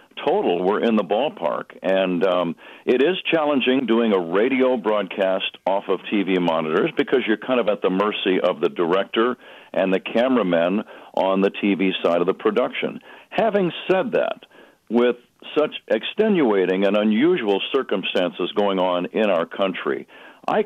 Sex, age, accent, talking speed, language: male, 60-79, American, 155 wpm, English